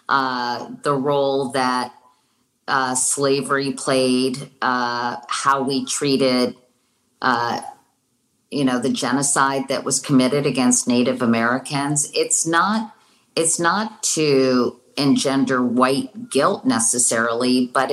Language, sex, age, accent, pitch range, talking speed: English, female, 40-59, American, 130-155 Hz, 105 wpm